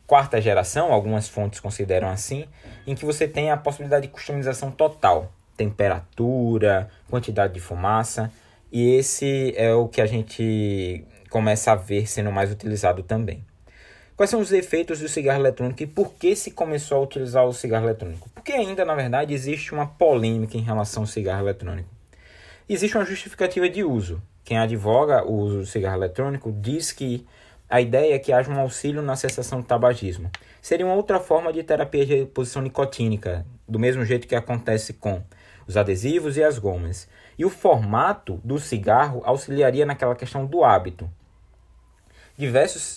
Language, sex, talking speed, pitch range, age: Portuguese, male, 165 wpm, 100-140 Hz, 20-39